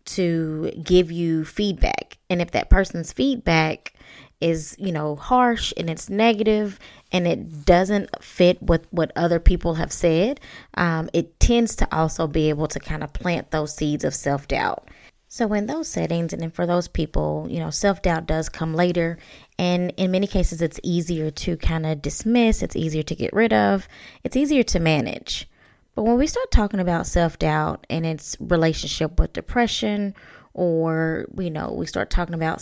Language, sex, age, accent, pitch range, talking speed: English, female, 20-39, American, 160-200 Hz, 180 wpm